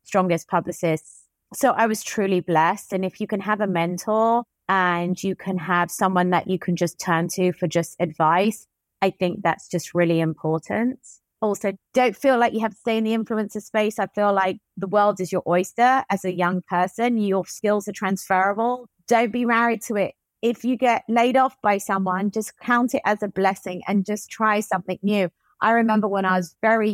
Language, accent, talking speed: English, British, 205 wpm